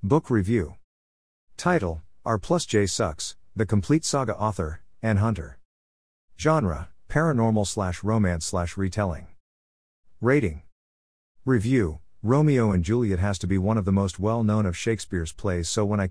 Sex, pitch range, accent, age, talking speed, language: male, 90-115 Hz, American, 50-69, 140 wpm, English